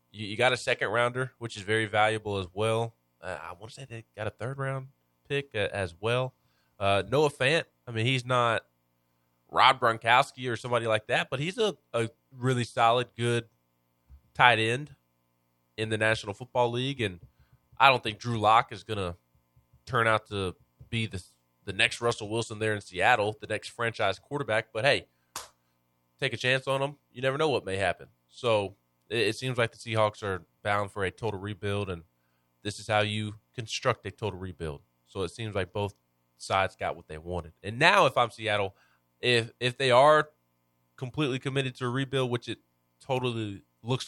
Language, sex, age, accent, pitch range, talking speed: English, male, 20-39, American, 90-125 Hz, 190 wpm